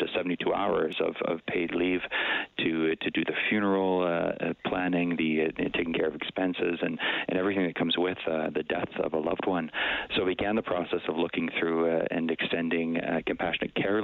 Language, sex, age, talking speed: English, male, 40-59, 200 wpm